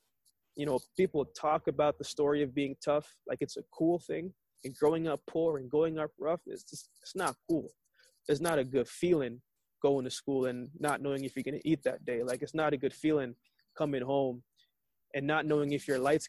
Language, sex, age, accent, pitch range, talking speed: English, male, 20-39, American, 135-160 Hz, 220 wpm